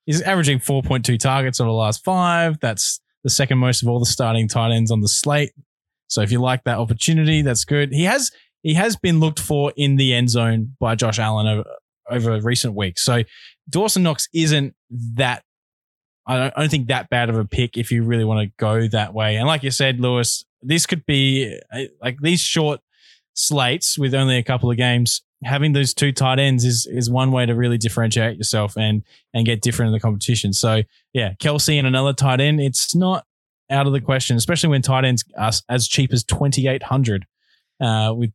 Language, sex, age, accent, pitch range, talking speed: English, male, 20-39, Australian, 115-150 Hz, 210 wpm